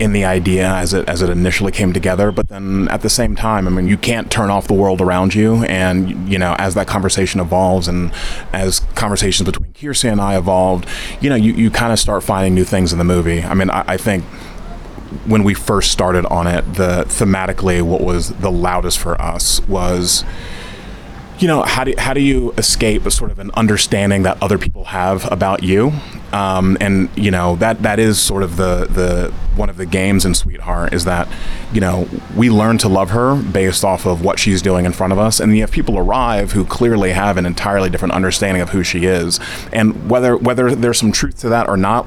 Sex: male